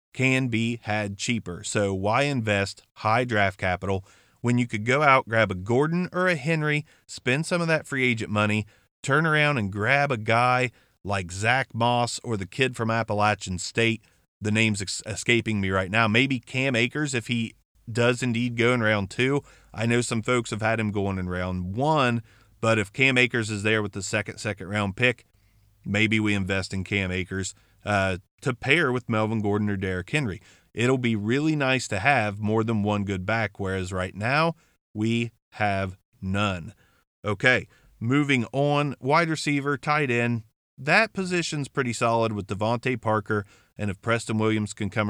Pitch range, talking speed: 100-130 Hz, 180 wpm